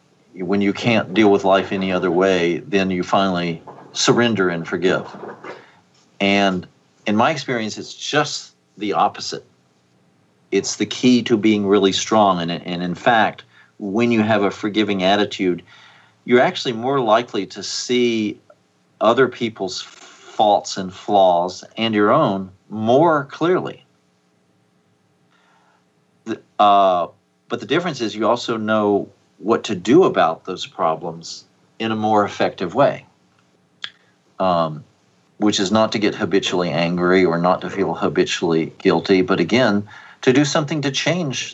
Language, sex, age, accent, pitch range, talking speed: English, male, 50-69, American, 85-105 Hz, 135 wpm